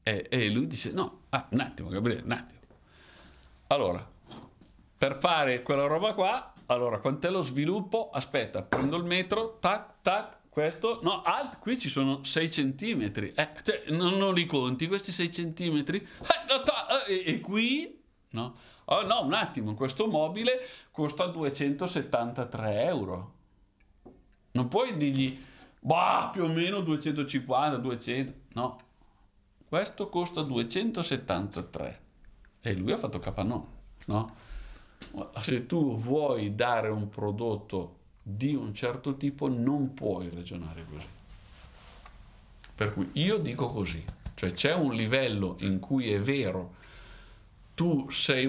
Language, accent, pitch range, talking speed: Italian, native, 105-165 Hz, 125 wpm